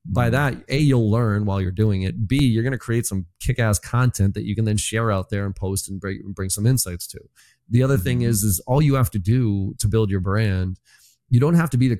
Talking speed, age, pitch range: 255 wpm, 30-49, 105-135 Hz